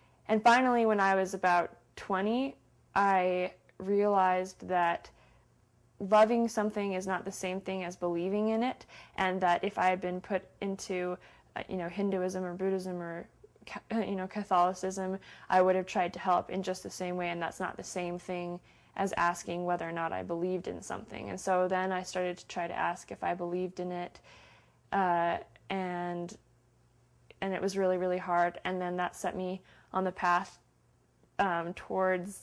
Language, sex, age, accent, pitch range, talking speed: English, female, 20-39, American, 175-190 Hz, 180 wpm